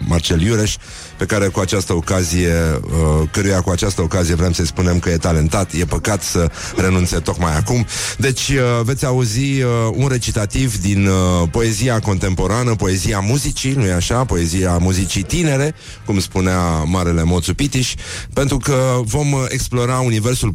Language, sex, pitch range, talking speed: Romanian, male, 90-120 Hz, 150 wpm